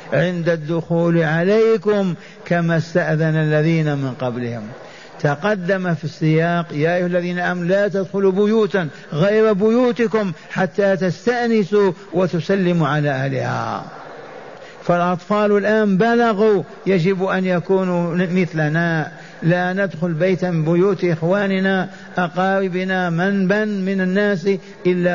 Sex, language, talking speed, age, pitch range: male, Arabic, 105 wpm, 50-69, 160-195 Hz